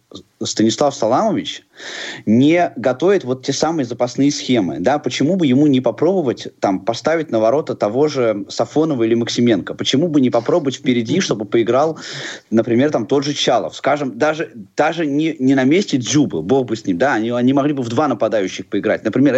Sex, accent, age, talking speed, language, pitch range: male, native, 30-49, 180 wpm, Russian, 120-150 Hz